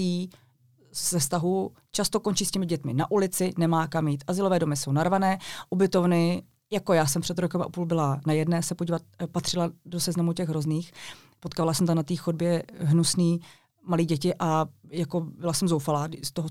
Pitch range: 160-185 Hz